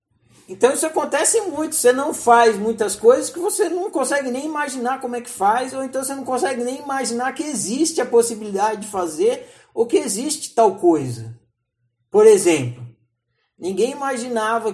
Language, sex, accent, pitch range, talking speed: Portuguese, male, Brazilian, 180-265 Hz, 165 wpm